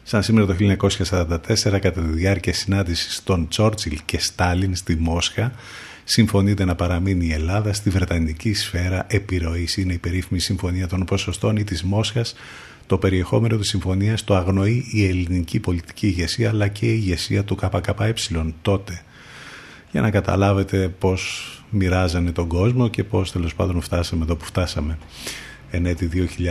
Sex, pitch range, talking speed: male, 90-105 Hz, 145 wpm